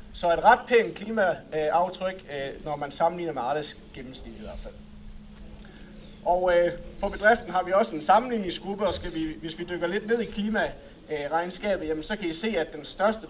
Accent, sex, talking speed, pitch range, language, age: native, male, 180 wpm, 160-200 Hz, Danish, 30-49